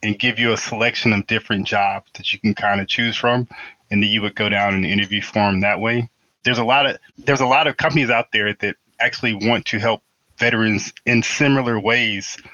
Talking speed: 220 wpm